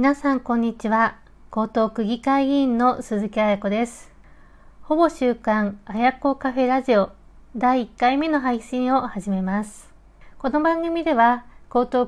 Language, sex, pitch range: Japanese, female, 210-275 Hz